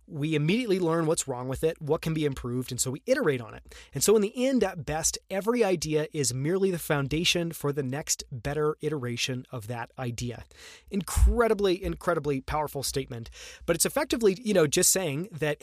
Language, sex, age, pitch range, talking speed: English, male, 30-49, 140-185 Hz, 190 wpm